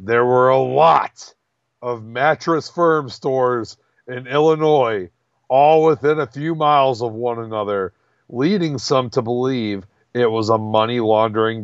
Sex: male